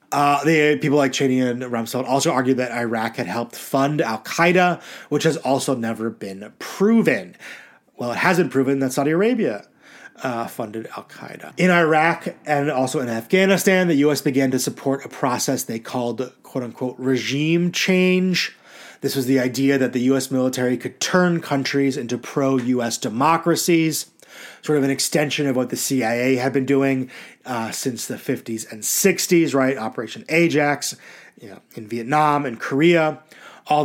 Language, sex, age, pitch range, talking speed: English, male, 30-49, 125-160 Hz, 160 wpm